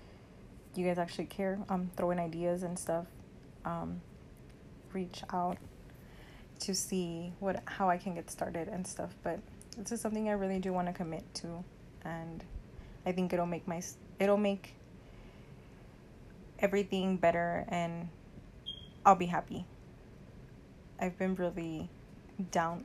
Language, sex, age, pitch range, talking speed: English, female, 20-39, 170-190 Hz, 135 wpm